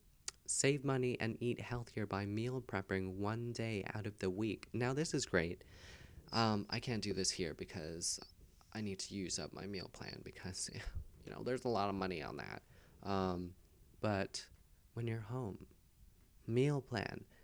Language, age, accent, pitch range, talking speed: English, 20-39, American, 90-110 Hz, 170 wpm